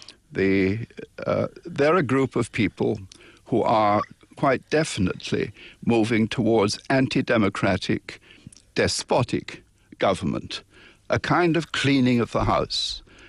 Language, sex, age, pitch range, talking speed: English, male, 60-79, 105-135 Hz, 100 wpm